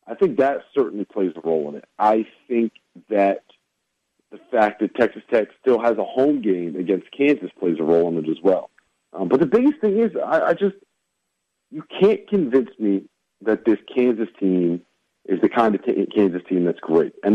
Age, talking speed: 50-69, 195 wpm